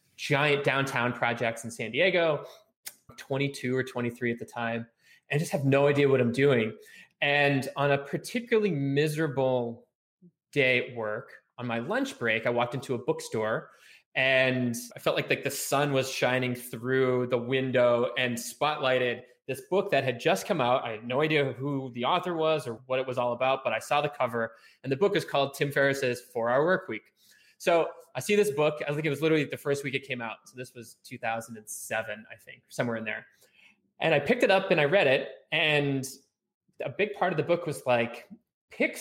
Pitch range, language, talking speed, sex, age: 120-155 Hz, English, 200 wpm, male, 20-39